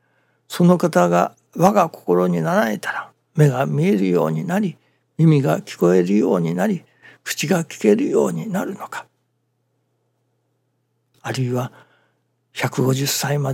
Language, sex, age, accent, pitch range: Japanese, male, 60-79, native, 105-155 Hz